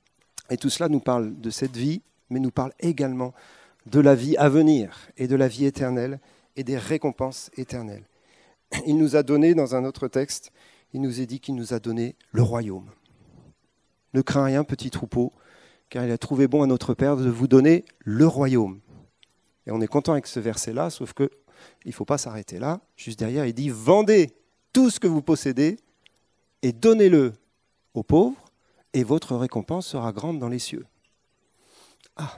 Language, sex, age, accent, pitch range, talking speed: French, male, 40-59, French, 120-150 Hz, 185 wpm